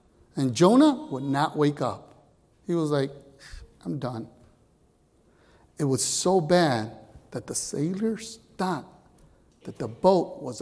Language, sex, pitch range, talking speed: English, male, 130-190 Hz, 130 wpm